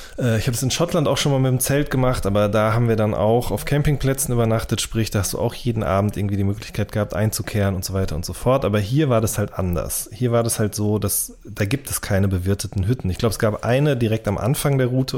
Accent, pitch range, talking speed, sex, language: German, 100-130 Hz, 265 wpm, male, German